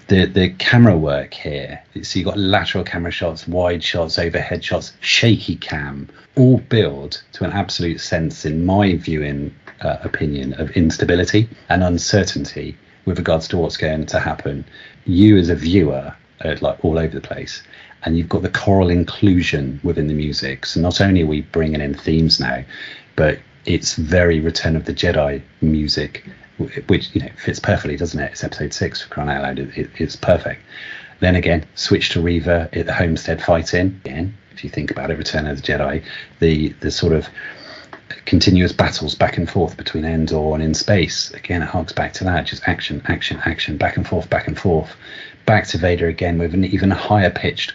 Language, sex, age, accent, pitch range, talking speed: English, male, 30-49, British, 80-95 Hz, 190 wpm